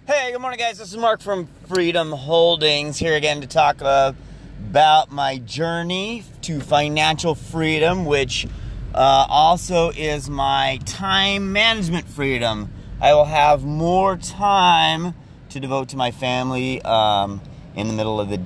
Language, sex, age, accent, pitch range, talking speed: English, male, 30-49, American, 115-150 Hz, 145 wpm